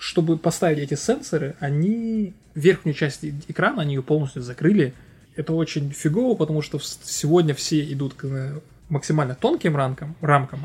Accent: native